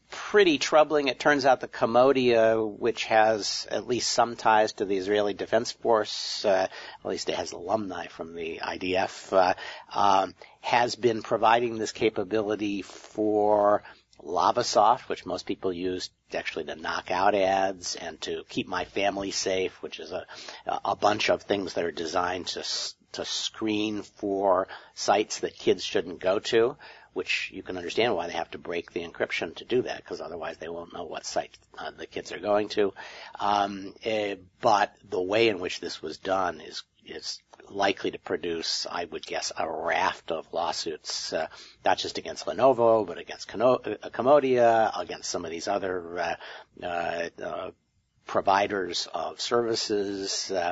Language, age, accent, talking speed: English, 50-69, American, 165 wpm